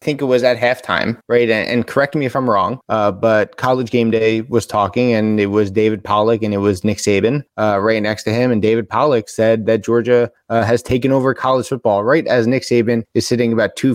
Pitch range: 115-135 Hz